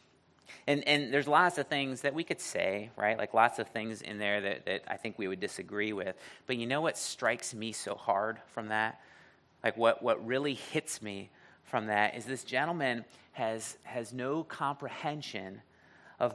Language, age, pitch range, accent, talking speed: English, 30-49, 115-165 Hz, American, 185 wpm